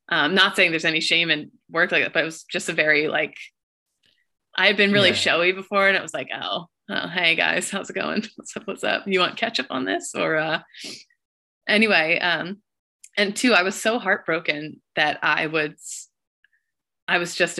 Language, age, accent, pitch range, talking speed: English, 20-39, American, 160-200 Hz, 200 wpm